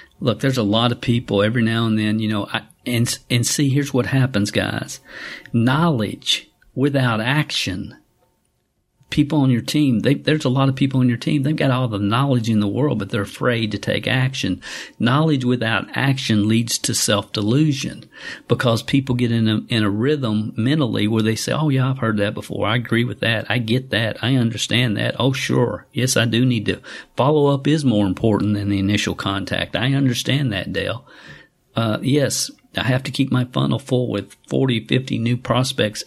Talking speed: 190 wpm